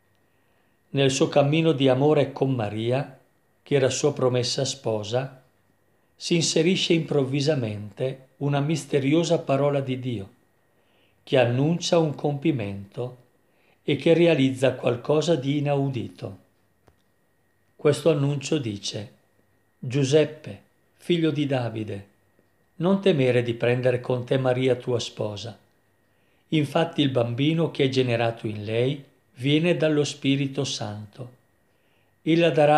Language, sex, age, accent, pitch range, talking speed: Italian, male, 50-69, native, 115-150 Hz, 110 wpm